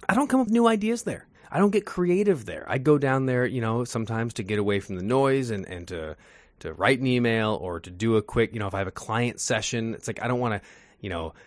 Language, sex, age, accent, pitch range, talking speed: English, male, 20-39, American, 95-125 Hz, 280 wpm